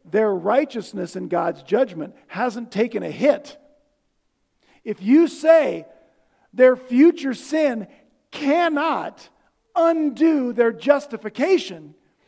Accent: American